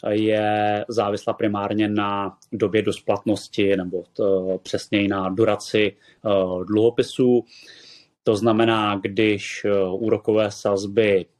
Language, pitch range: Czech, 105-120 Hz